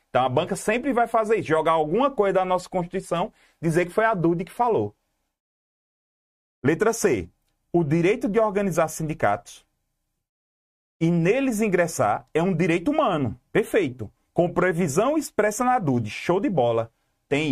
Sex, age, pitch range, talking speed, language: male, 30-49, 140-205 Hz, 150 wpm, Portuguese